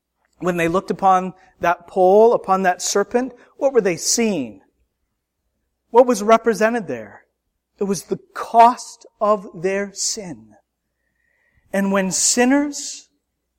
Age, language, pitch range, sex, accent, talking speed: 40-59, English, 190-270 Hz, male, American, 120 wpm